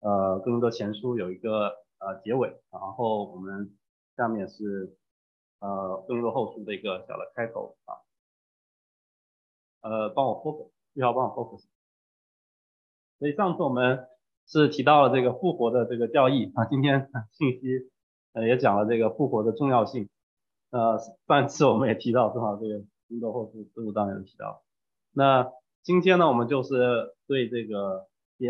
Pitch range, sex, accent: 105-135 Hz, male, Chinese